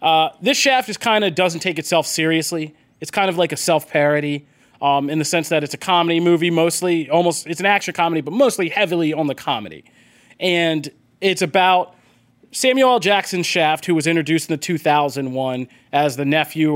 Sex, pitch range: male, 135-165 Hz